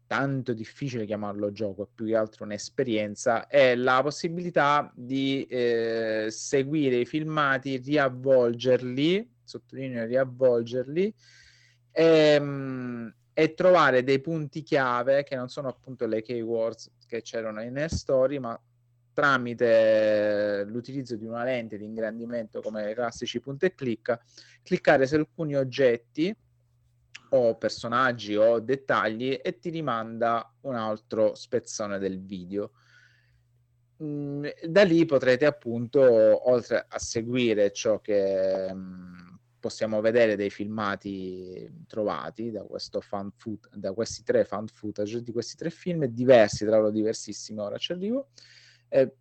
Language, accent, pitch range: Italian, native, 110-135 Hz